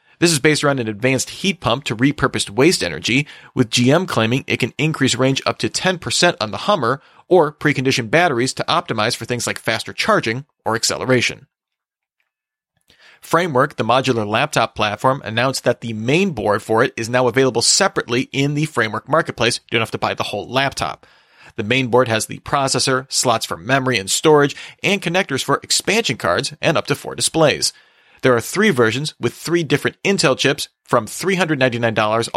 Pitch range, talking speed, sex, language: 115-150 Hz, 180 wpm, male, English